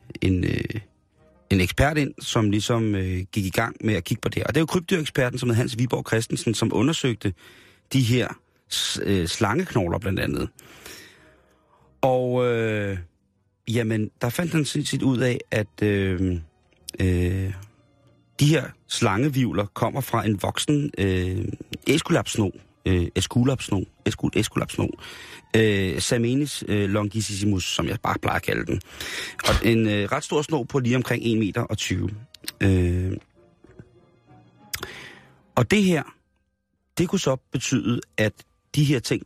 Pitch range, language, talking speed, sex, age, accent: 95-125 Hz, Danish, 140 wpm, male, 40-59, native